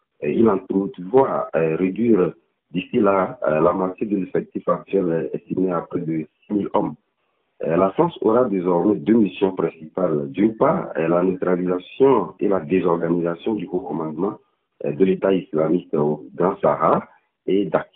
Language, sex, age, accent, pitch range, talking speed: French, male, 50-69, French, 85-105 Hz, 135 wpm